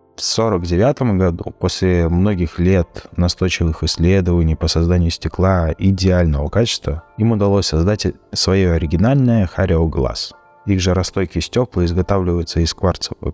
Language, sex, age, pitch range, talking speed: Russian, male, 20-39, 85-105 Hz, 120 wpm